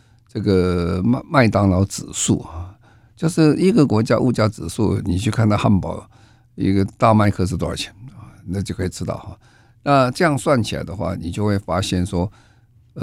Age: 50-69